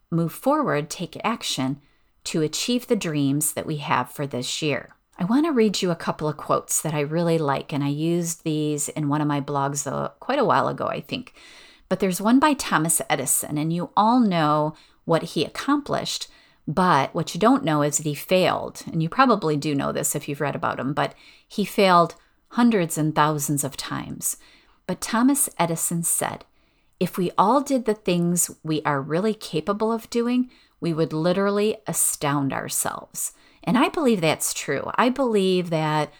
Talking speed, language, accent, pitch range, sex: 185 wpm, English, American, 150-185 Hz, female